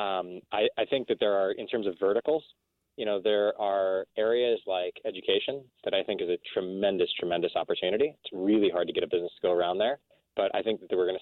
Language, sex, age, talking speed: English, male, 20-39, 235 wpm